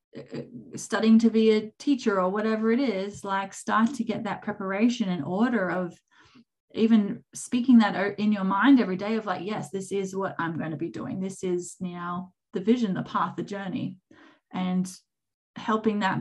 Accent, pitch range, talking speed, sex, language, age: Australian, 185-230 Hz, 180 wpm, female, English, 20-39